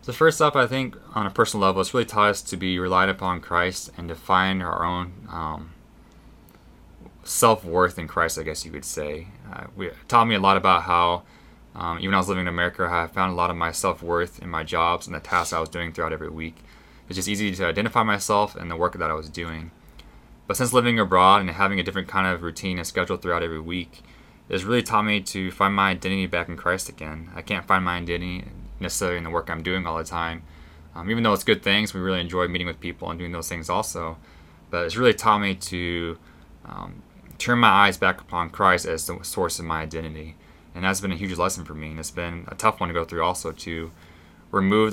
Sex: male